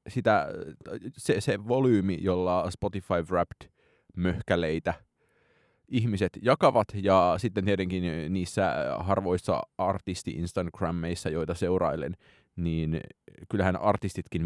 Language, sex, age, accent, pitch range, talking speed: Finnish, male, 30-49, native, 85-100 Hz, 80 wpm